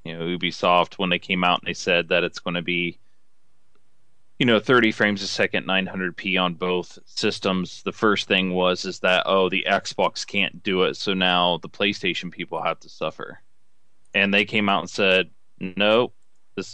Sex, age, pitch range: male, 20-39, 90-105 Hz